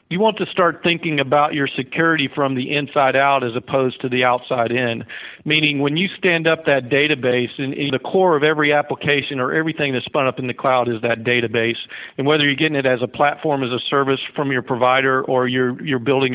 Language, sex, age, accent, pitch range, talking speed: English, male, 50-69, American, 125-145 Hz, 225 wpm